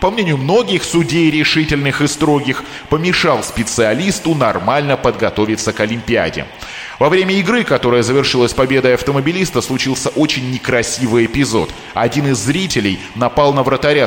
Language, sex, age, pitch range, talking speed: Russian, male, 20-39, 115-155 Hz, 130 wpm